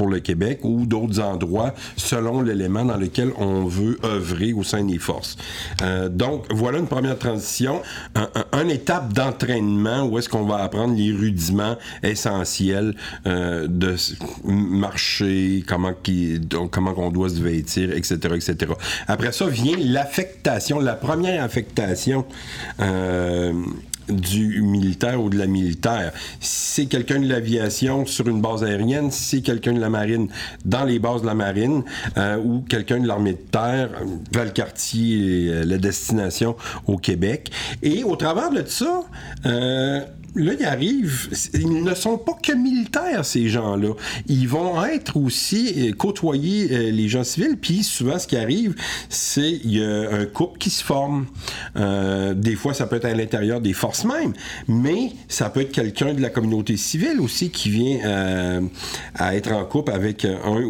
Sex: male